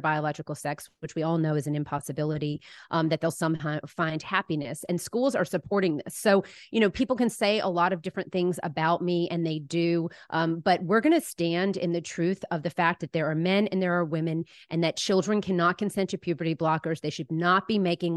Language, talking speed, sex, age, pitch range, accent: English, 230 wpm, female, 30-49, 165-195 Hz, American